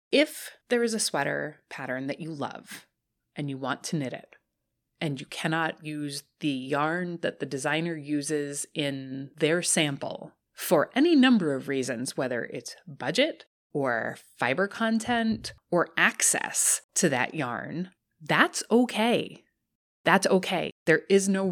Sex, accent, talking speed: female, American, 140 wpm